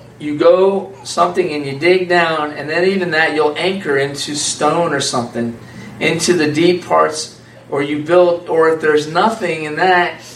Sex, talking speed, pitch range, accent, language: male, 175 wpm, 135-170 Hz, American, English